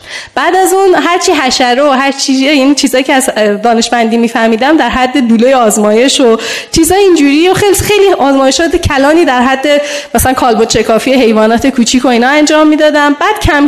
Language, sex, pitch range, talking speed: Persian, female, 240-310 Hz, 165 wpm